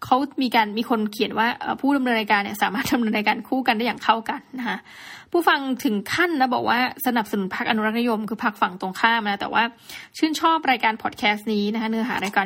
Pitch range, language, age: 205-260 Hz, Thai, 20-39